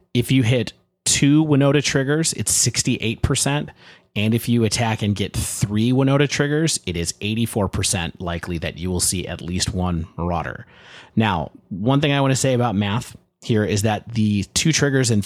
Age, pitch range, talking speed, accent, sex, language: 30-49, 95-125 Hz, 175 wpm, American, male, English